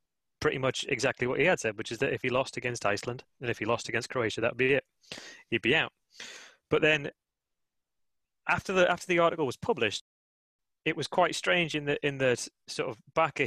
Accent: British